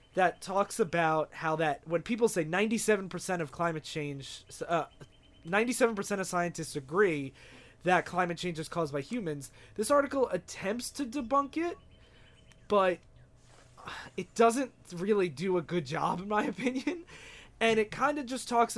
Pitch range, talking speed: 155-210 Hz, 145 wpm